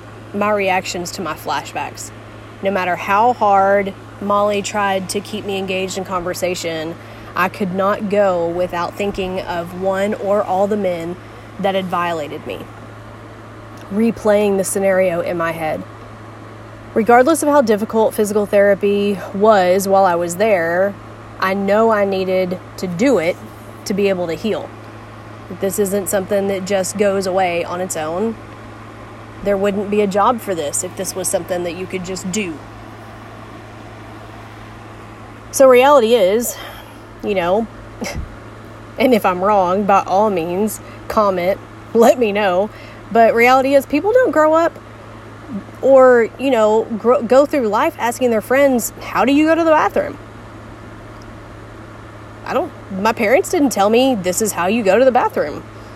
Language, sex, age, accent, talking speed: English, female, 30-49, American, 150 wpm